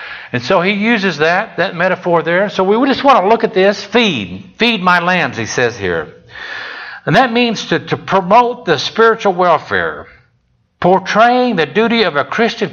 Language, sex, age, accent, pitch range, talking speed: English, male, 60-79, American, 160-220 Hz, 180 wpm